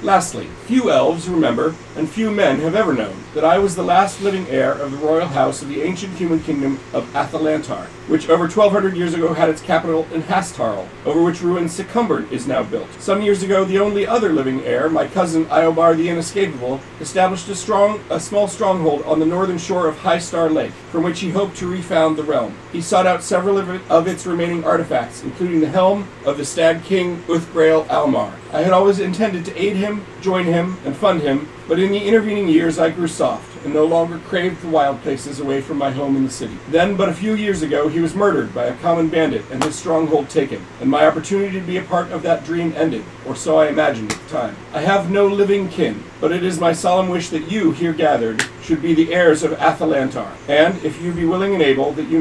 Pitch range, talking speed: 155-185 Hz, 230 wpm